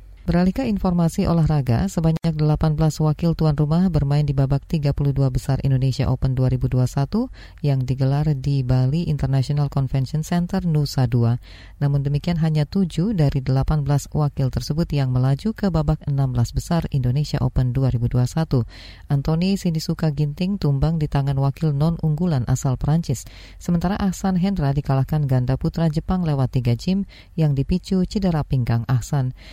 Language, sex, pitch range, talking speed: Indonesian, female, 130-165 Hz, 140 wpm